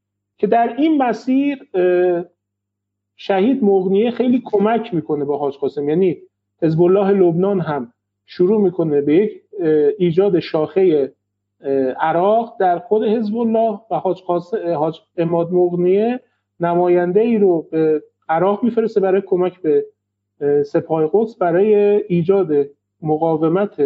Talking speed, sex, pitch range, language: 105 wpm, male, 155-205 Hz, Persian